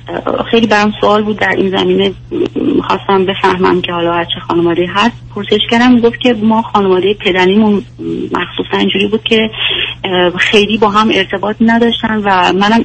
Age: 30-49